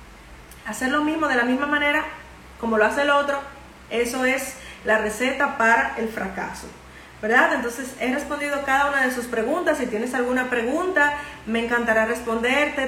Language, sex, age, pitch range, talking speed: Spanish, female, 30-49, 230-285 Hz, 165 wpm